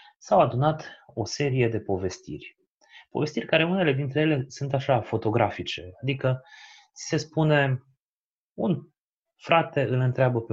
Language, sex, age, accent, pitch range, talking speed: Romanian, male, 30-49, native, 110-150 Hz, 125 wpm